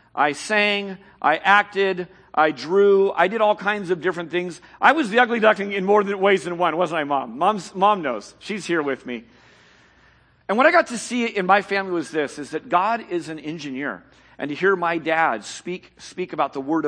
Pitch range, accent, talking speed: 145-195 Hz, American, 215 wpm